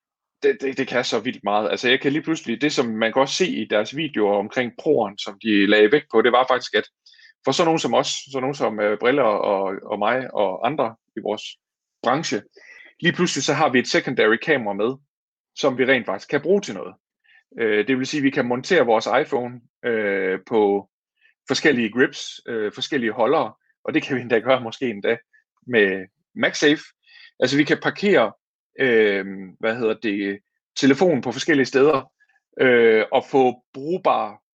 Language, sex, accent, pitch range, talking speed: Danish, male, native, 115-170 Hz, 185 wpm